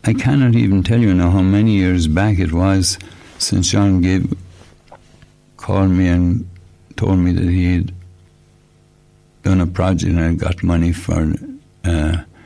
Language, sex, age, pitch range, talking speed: English, male, 60-79, 85-100 Hz, 145 wpm